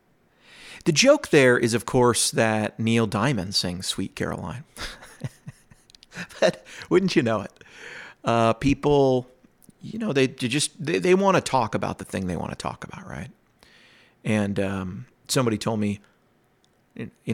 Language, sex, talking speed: English, male, 150 wpm